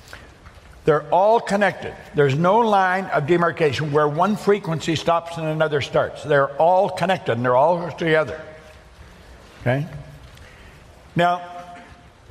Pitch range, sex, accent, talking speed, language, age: 135-205 Hz, male, American, 115 wpm, English, 60-79